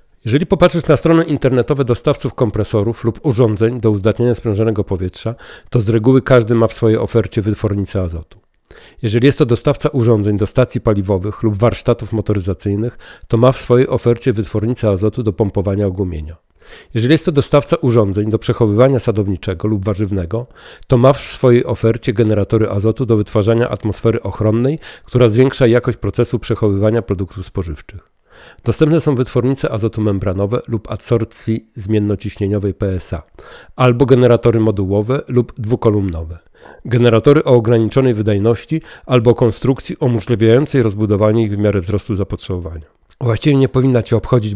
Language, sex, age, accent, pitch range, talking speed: Polish, male, 40-59, native, 105-125 Hz, 140 wpm